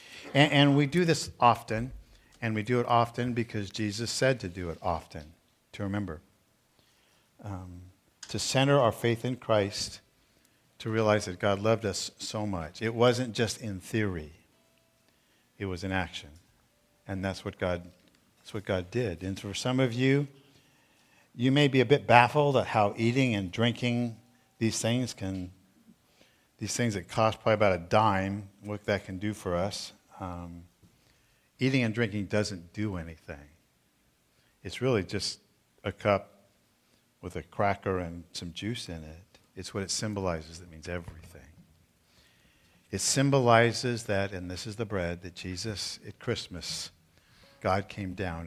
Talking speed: 155 wpm